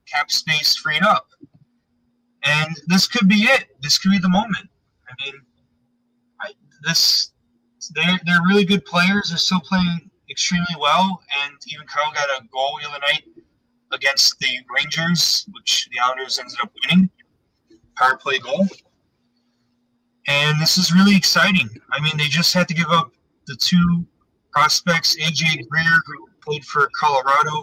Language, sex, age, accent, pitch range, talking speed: English, male, 30-49, American, 135-185 Hz, 155 wpm